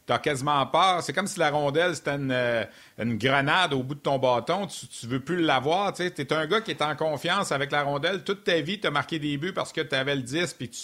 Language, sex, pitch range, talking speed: French, male, 125-155 Hz, 265 wpm